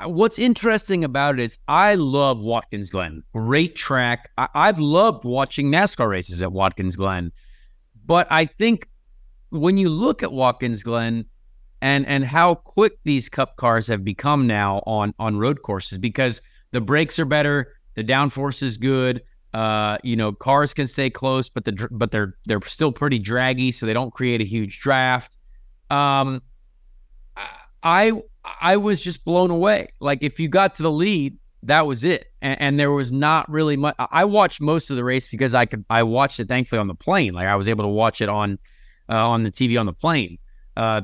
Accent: American